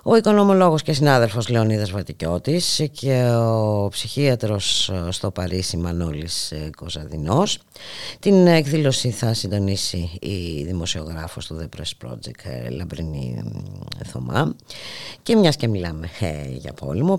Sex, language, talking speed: female, Greek, 110 wpm